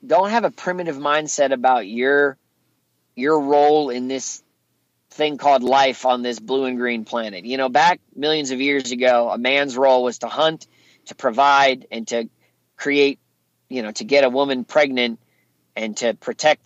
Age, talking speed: 40-59, 175 wpm